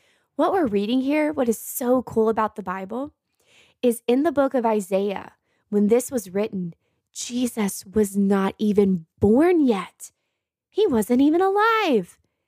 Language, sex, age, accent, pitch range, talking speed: English, female, 20-39, American, 205-265 Hz, 150 wpm